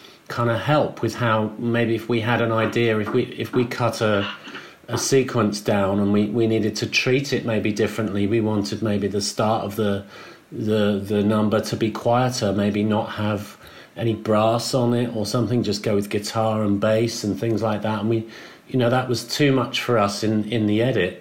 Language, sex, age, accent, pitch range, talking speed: English, male, 40-59, British, 105-120 Hz, 210 wpm